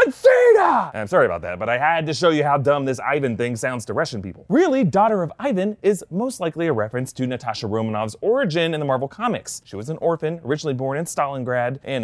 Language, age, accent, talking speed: English, 30-49, American, 225 wpm